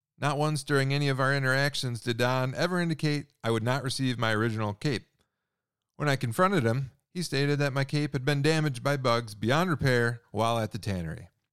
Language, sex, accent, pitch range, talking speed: English, male, American, 110-145 Hz, 200 wpm